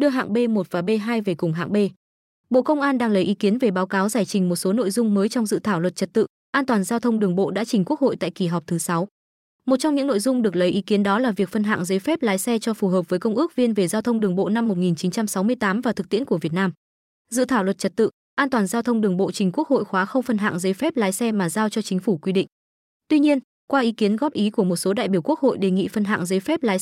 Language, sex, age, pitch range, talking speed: Vietnamese, female, 20-39, 195-245 Hz, 300 wpm